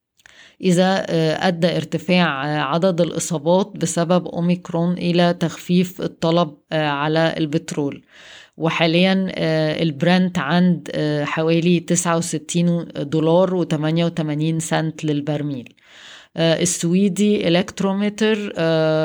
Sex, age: female, 20-39